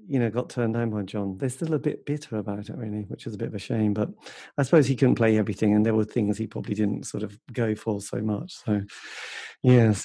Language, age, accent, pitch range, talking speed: English, 40-59, British, 105-130 Hz, 265 wpm